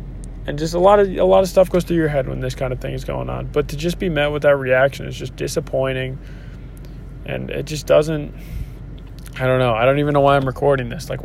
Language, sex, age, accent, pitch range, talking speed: English, male, 20-39, American, 130-145 Hz, 255 wpm